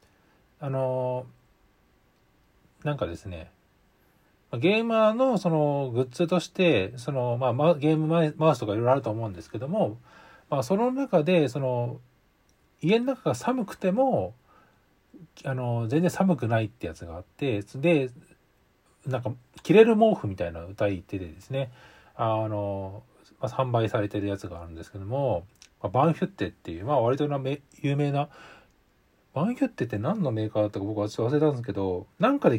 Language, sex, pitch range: Japanese, male, 105-165 Hz